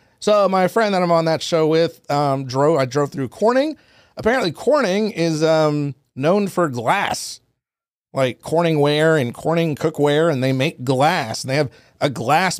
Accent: American